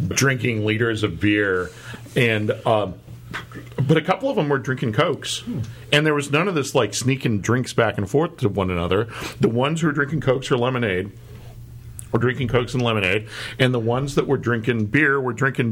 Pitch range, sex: 105-130 Hz, male